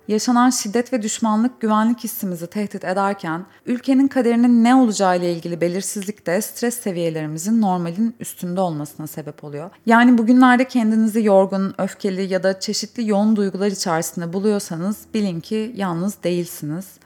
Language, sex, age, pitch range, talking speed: Turkish, female, 30-49, 170-215 Hz, 135 wpm